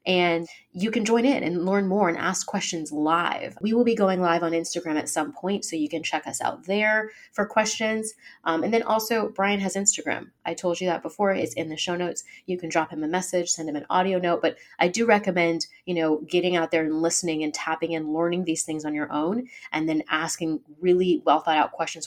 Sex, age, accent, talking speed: female, 30-49, American, 235 wpm